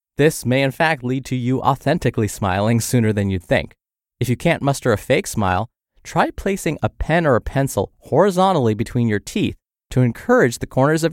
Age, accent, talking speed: 20-39, American, 195 wpm